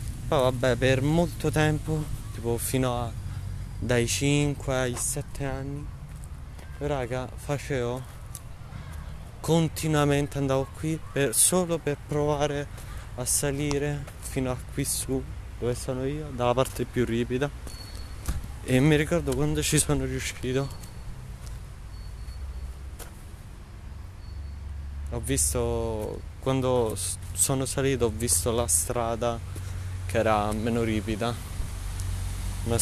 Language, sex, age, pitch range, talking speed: Italian, male, 20-39, 95-130 Hz, 100 wpm